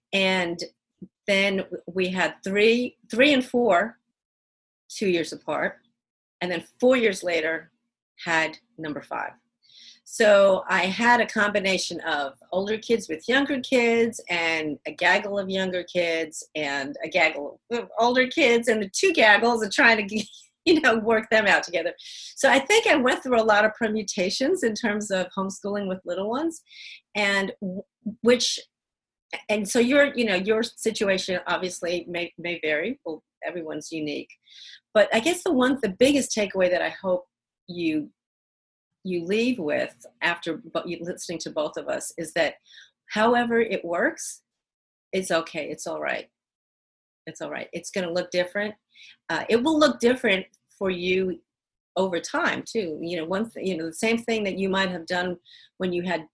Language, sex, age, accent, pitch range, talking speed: English, female, 40-59, American, 175-230 Hz, 165 wpm